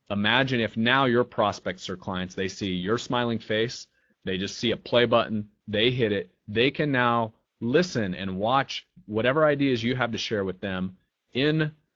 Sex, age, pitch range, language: male, 30-49, 95-120 Hz, English